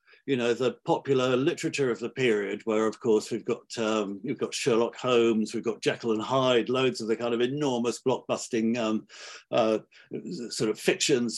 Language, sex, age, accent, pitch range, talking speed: English, male, 50-69, British, 115-145 Hz, 185 wpm